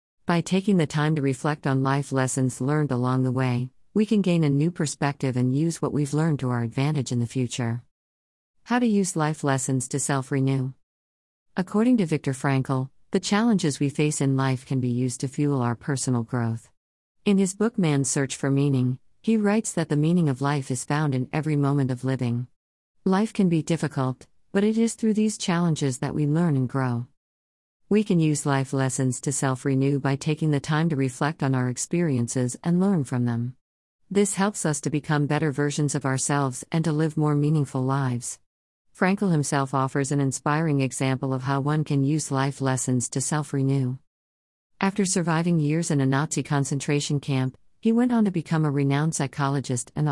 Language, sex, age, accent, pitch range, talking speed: English, female, 50-69, American, 130-160 Hz, 190 wpm